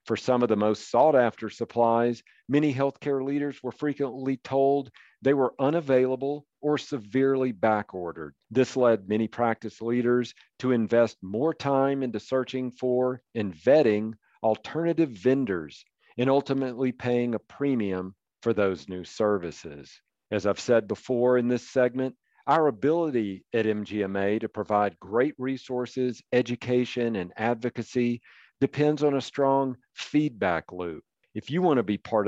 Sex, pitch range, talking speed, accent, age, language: male, 110-135 Hz, 135 wpm, American, 50-69, English